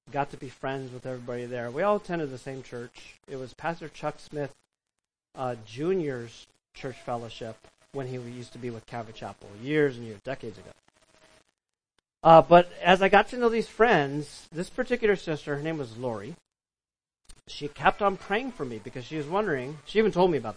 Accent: American